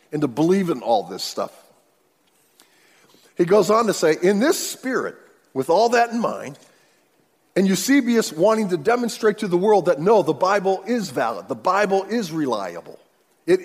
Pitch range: 170-230 Hz